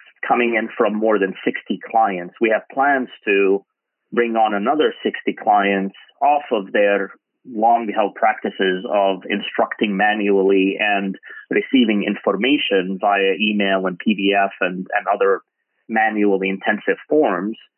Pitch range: 100-160 Hz